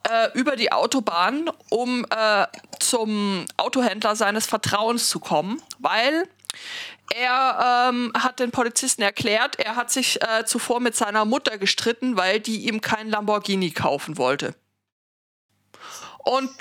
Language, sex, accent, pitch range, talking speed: German, female, German, 190-235 Hz, 125 wpm